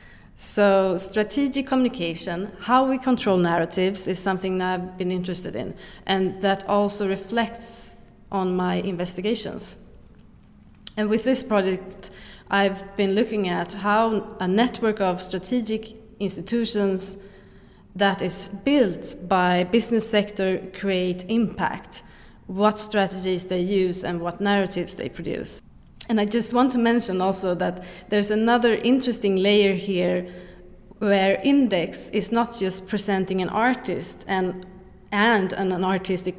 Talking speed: 130 wpm